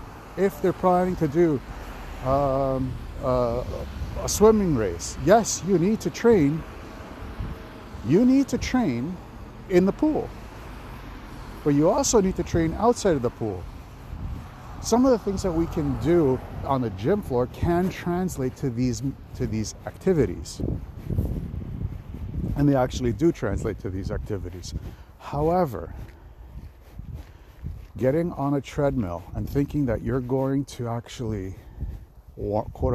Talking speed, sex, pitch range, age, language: 130 wpm, male, 95-140 Hz, 50-69, English